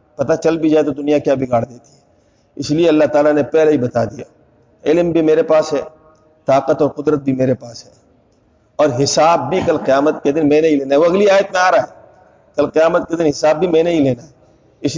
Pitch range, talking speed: 145-190 Hz, 250 wpm